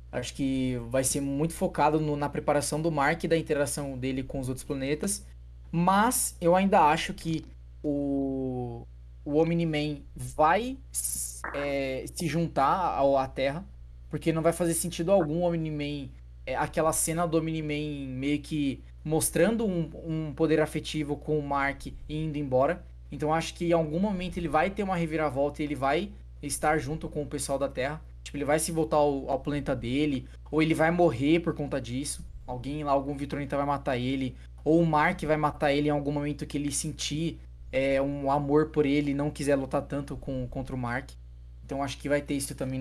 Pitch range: 135-160 Hz